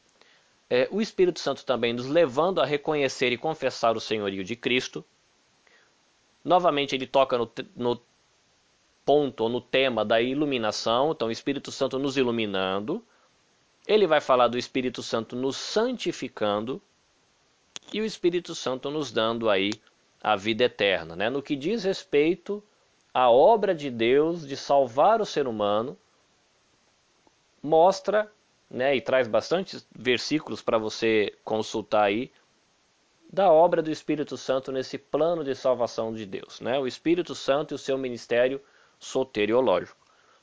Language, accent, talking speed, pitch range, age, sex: Portuguese, Brazilian, 140 wpm, 120-160 Hz, 20-39, male